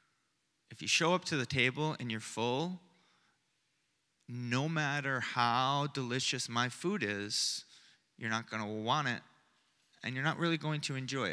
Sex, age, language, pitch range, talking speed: male, 30-49, English, 120-150 Hz, 160 wpm